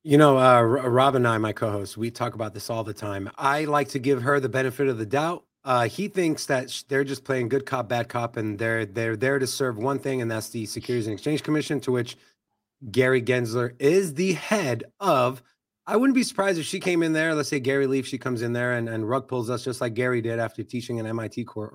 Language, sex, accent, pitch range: English, male, American, 125-185 Hz